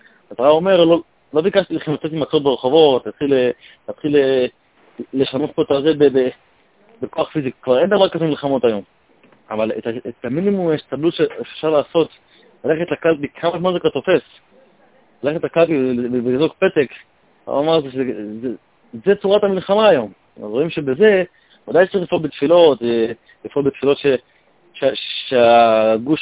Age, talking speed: 30-49, 125 wpm